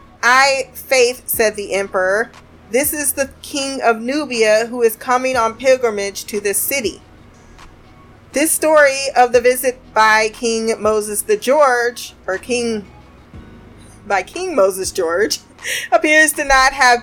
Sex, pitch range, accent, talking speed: female, 205-270 Hz, American, 135 wpm